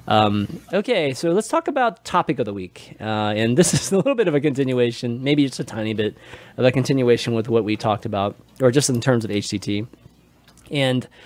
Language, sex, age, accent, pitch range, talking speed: English, male, 20-39, American, 110-160 Hz, 215 wpm